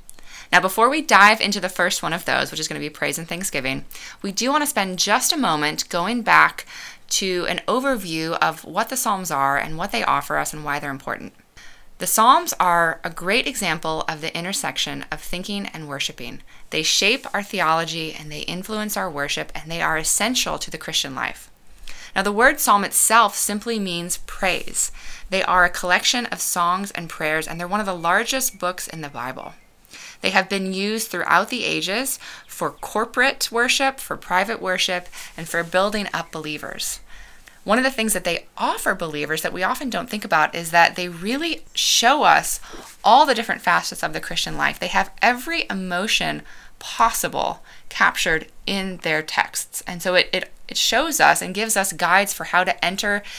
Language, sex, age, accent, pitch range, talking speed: English, female, 20-39, American, 160-210 Hz, 190 wpm